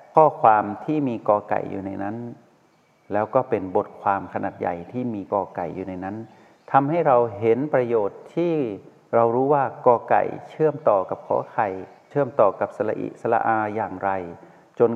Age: 60-79